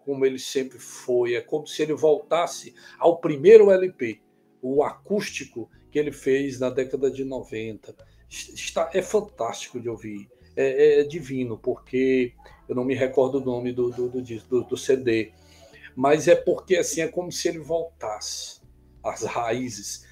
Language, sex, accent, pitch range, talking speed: Portuguese, male, Brazilian, 115-180 Hz, 160 wpm